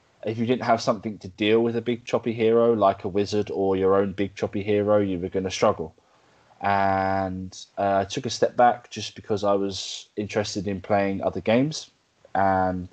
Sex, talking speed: male, 200 wpm